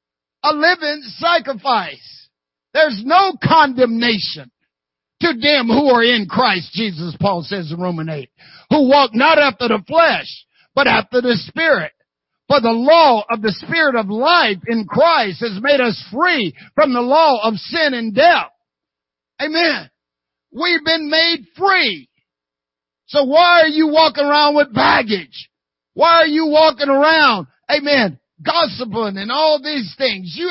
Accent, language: American, English